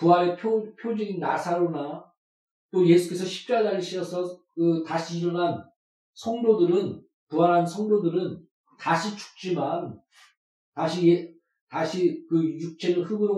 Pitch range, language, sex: 170-220 Hz, Korean, male